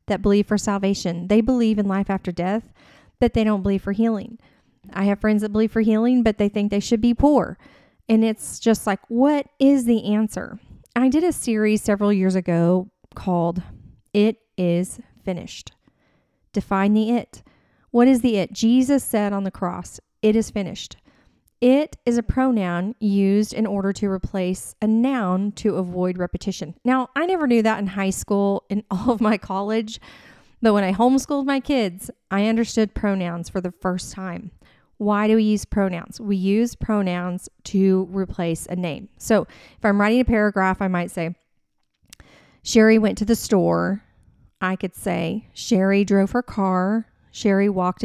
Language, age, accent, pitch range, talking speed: English, 30-49, American, 190-225 Hz, 170 wpm